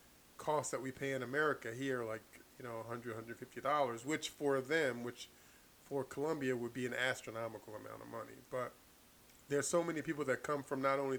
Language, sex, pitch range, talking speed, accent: English, male, 120-140 Hz, 195 wpm, American